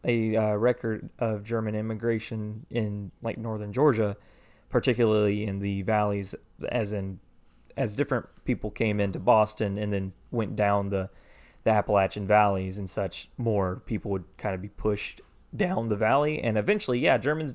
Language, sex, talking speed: English, male, 155 wpm